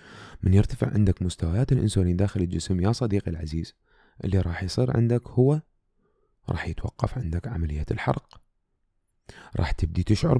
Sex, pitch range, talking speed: male, 90-125 Hz, 135 wpm